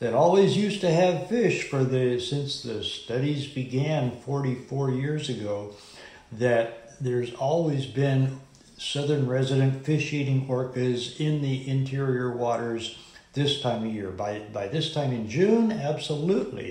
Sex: male